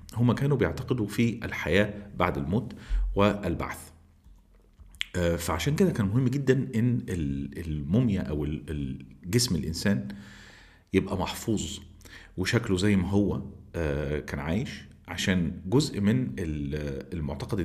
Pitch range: 80-105 Hz